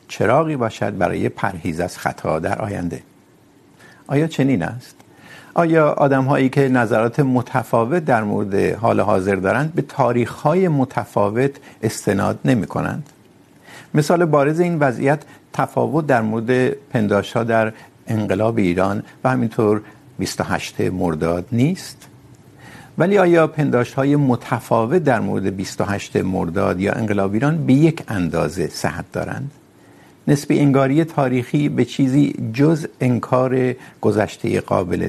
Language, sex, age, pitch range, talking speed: Urdu, male, 50-69, 110-145 Hz, 120 wpm